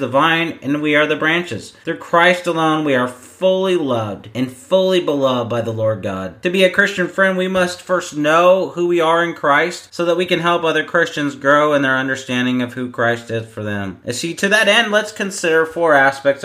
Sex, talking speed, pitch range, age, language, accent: male, 225 wpm, 135-185 Hz, 30-49, English, American